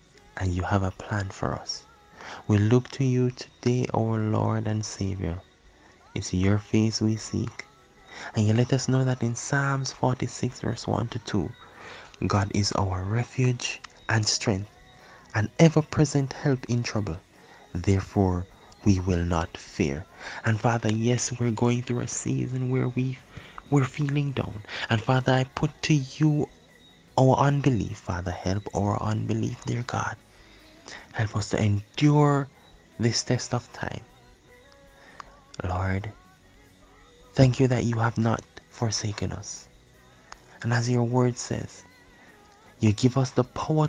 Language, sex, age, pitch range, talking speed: English, male, 20-39, 100-130 Hz, 145 wpm